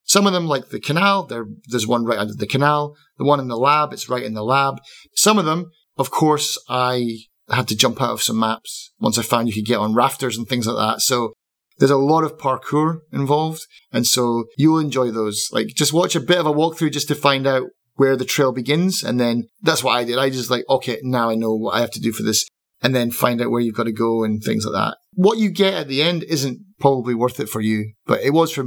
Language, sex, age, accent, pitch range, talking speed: English, male, 30-49, British, 120-145 Hz, 260 wpm